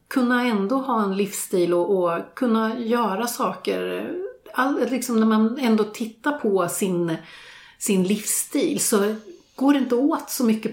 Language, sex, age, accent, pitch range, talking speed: Swedish, female, 40-59, native, 175-245 Hz, 150 wpm